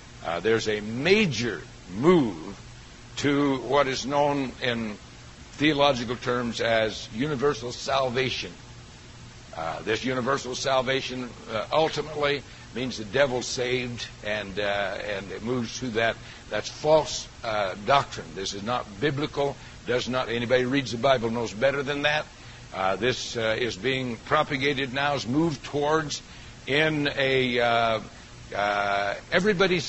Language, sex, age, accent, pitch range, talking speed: English, male, 60-79, American, 120-145 Hz, 135 wpm